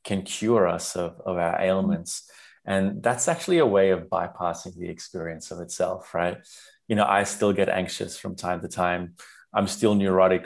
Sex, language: male, English